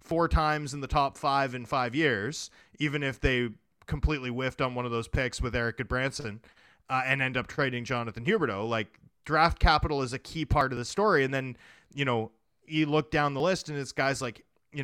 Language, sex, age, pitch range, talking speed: English, male, 30-49, 125-150 Hz, 215 wpm